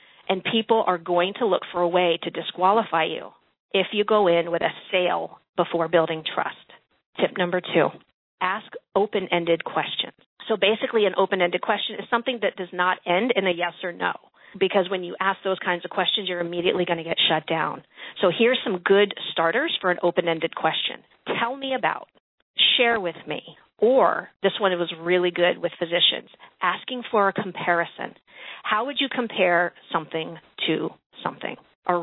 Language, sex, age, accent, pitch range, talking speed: English, female, 40-59, American, 170-205 Hz, 180 wpm